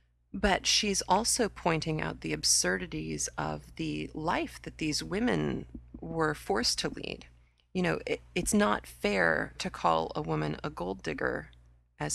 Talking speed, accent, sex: 150 wpm, American, female